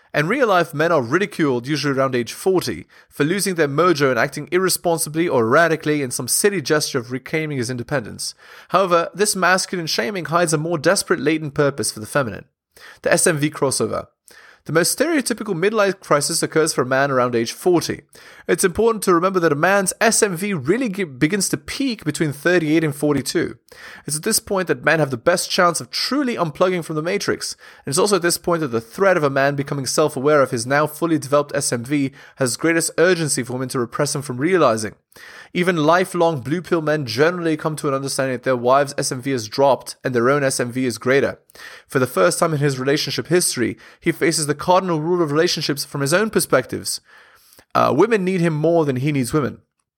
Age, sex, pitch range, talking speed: 30-49, male, 140-180 Hz, 200 wpm